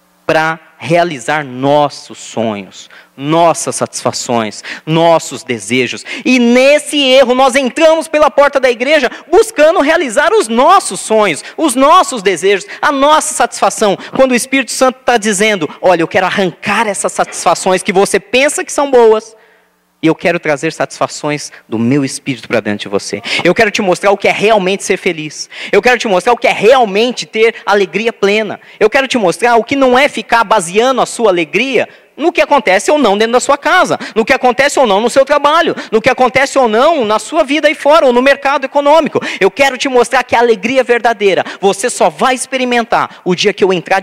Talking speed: 190 wpm